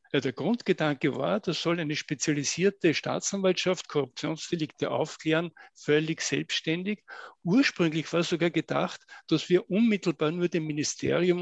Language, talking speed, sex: German, 120 wpm, male